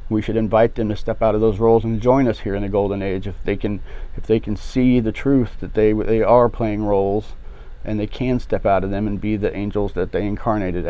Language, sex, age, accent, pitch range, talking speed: English, male, 40-59, American, 95-115 Hz, 260 wpm